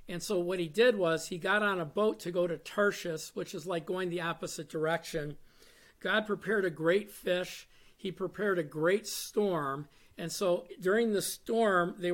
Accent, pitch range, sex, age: American, 170-210 Hz, male, 50-69